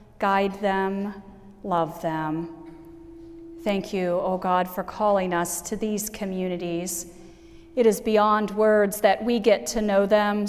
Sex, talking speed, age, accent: female, 135 wpm, 40-59, American